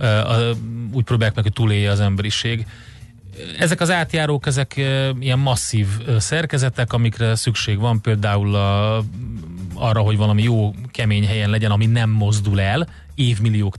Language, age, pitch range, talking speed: Hungarian, 30-49, 105-120 Hz, 130 wpm